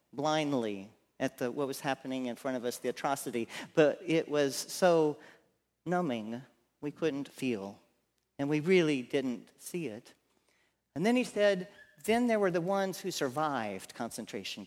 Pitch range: 125-185 Hz